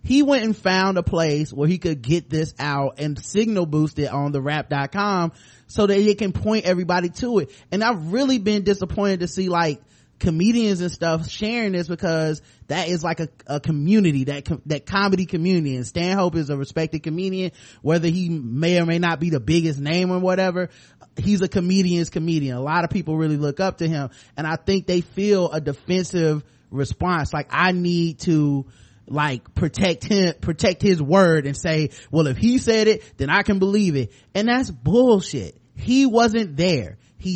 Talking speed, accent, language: 195 wpm, American, English